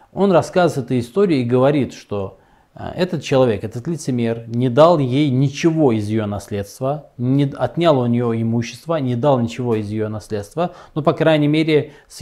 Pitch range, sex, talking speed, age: 115-150 Hz, male, 165 wpm, 20-39